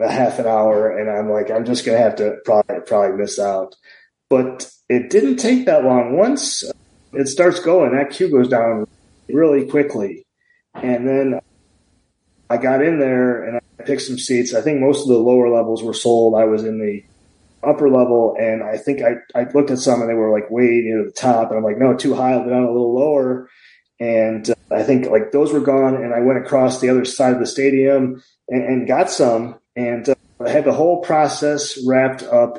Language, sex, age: English, male, 30-49